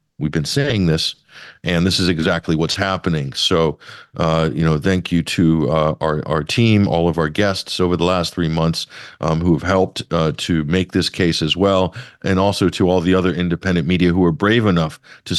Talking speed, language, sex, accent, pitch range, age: 210 wpm, English, male, American, 85-95 Hz, 50-69